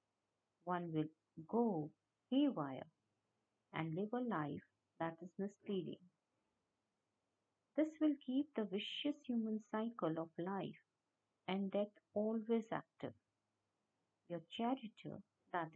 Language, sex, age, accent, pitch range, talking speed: English, female, 50-69, Indian, 160-235 Hz, 105 wpm